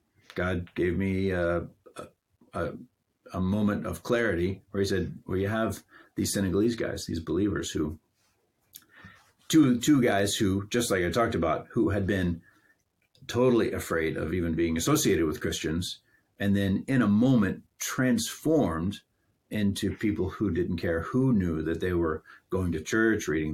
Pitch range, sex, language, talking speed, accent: 85-110 Hz, male, English, 155 wpm, American